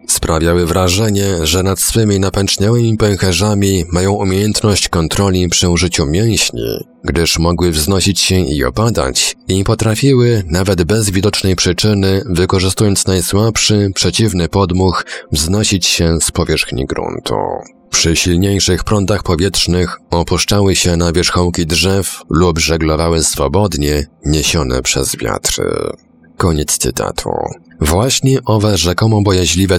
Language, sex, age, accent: Polish, male, 30-49, native